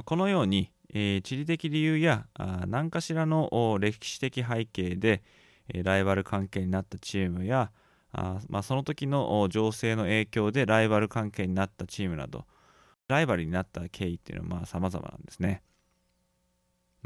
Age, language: 20-39, Japanese